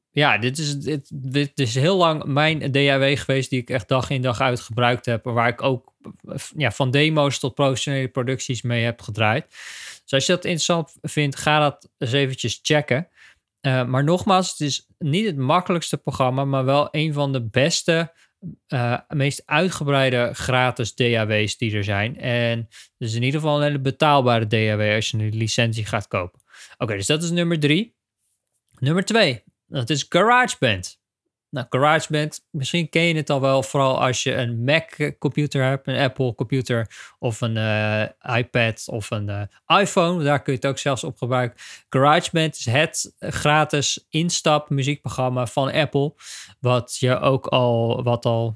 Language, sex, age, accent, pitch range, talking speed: Dutch, male, 20-39, Dutch, 120-150 Hz, 170 wpm